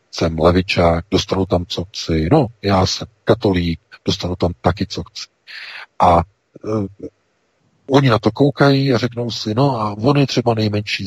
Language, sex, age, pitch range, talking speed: Czech, male, 40-59, 85-105 Hz, 155 wpm